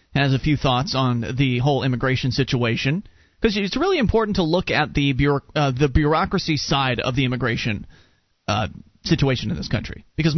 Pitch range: 135-205 Hz